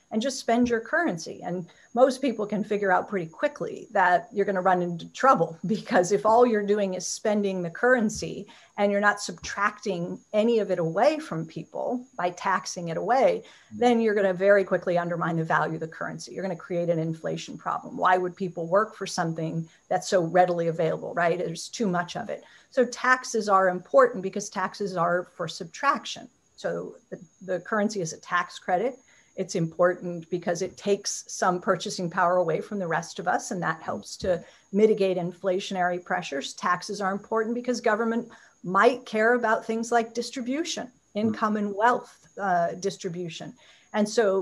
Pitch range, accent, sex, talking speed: 180-230 Hz, American, female, 175 wpm